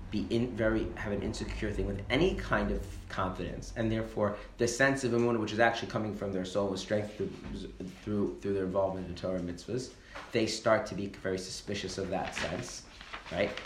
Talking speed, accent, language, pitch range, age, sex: 200 wpm, American, English, 90-105 Hz, 30-49, male